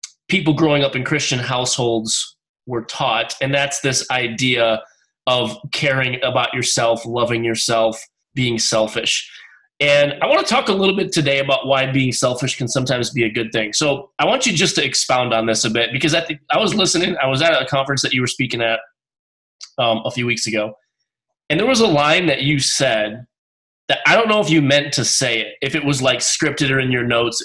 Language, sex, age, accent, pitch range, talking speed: English, male, 20-39, American, 115-145 Hz, 210 wpm